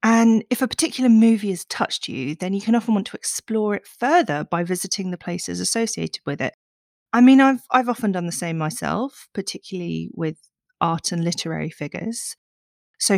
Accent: British